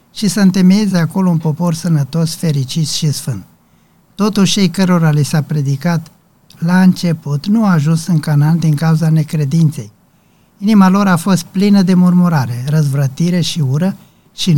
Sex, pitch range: male, 145-180 Hz